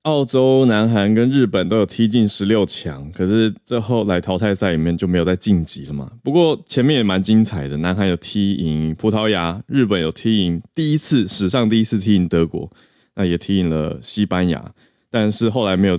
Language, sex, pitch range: Chinese, male, 90-120 Hz